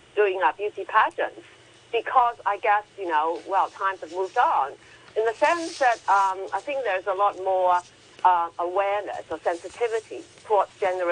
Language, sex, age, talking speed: English, female, 40-59, 165 wpm